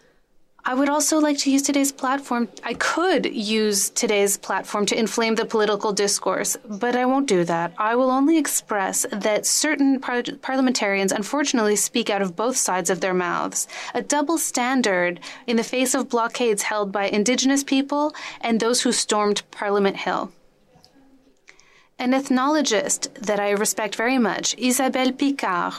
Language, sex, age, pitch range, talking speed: English, female, 20-39, 205-270 Hz, 155 wpm